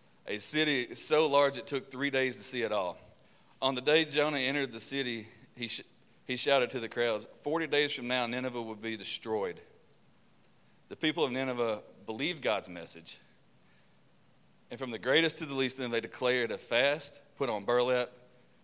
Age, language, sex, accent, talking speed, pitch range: 30-49, English, male, American, 185 wpm, 115-135 Hz